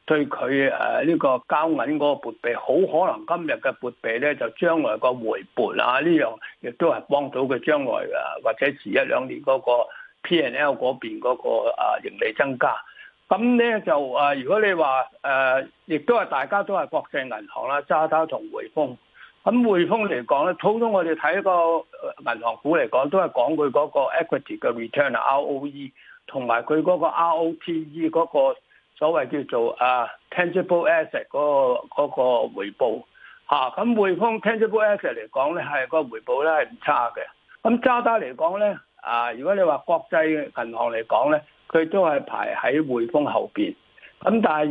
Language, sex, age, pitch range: Chinese, male, 60-79, 145-225 Hz